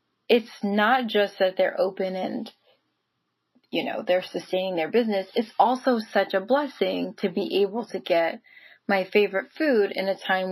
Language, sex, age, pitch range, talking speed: English, female, 20-39, 185-220 Hz, 165 wpm